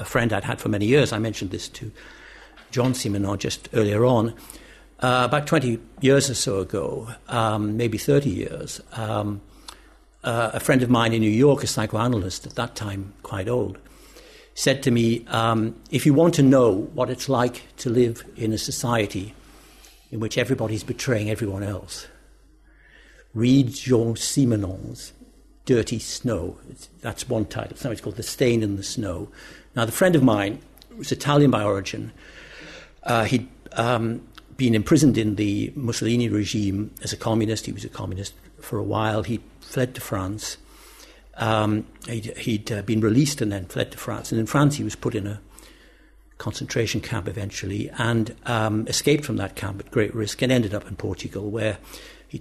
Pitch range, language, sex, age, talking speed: 105-125 Hz, English, male, 60-79, 175 wpm